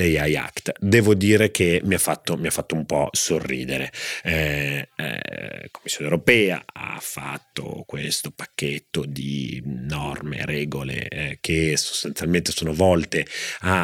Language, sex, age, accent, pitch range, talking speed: Italian, male, 30-49, native, 75-100 Hz, 145 wpm